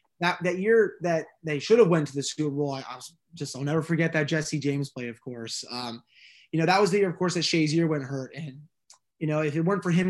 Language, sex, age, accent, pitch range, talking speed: English, male, 20-39, American, 140-170 Hz, 265 wpm